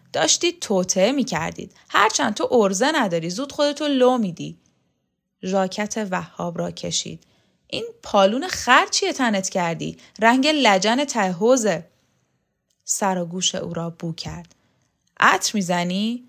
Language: Persian